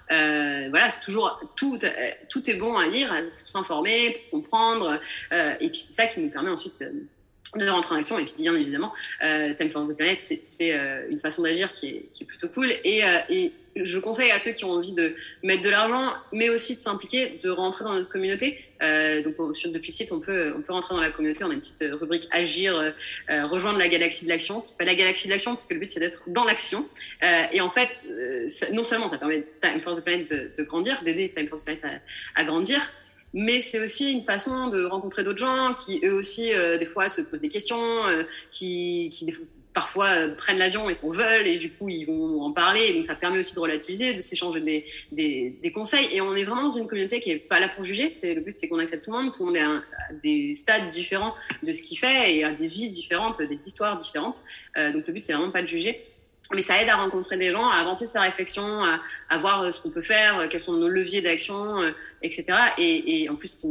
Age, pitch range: 30-49, 170-265 Hz